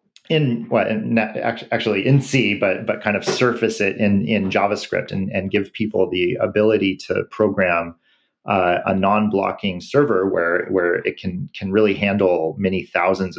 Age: 40-59